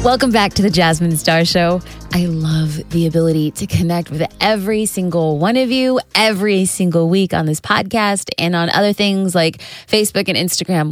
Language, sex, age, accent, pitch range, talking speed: English, female, 20-39, American, 160-205 Hz, 180 wpm